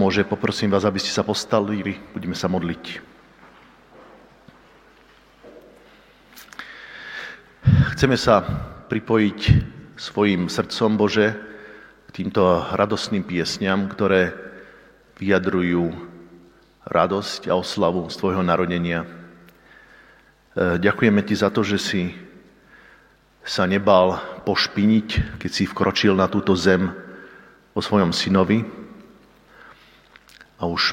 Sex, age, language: male, 50-69, Slovak